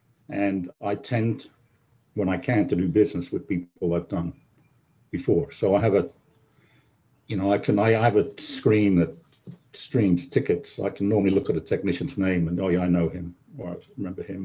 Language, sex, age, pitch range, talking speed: English, male, 60-79, 90-125 Hz, 200 wpm